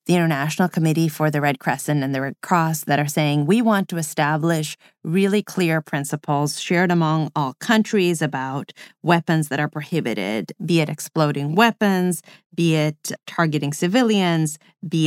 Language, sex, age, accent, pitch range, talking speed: English, female, 30-49, American, 155-200 Hz, 155 wpm